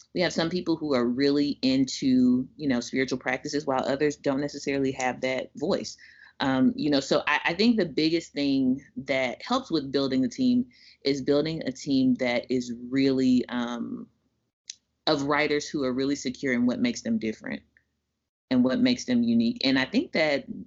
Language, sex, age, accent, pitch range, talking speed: English, female, 30-49, American, 130-175 Hz, 185 wpm